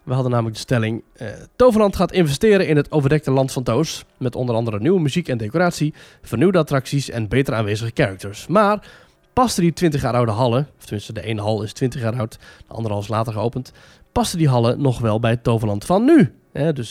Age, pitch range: 20-39, 125-175 Hz